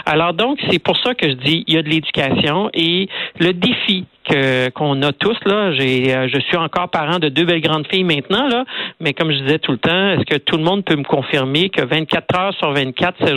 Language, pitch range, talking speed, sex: French, 150-190 Hz, 245 wpm, male